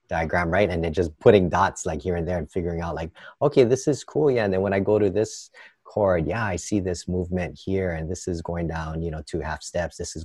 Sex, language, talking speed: male, English, 270 wpm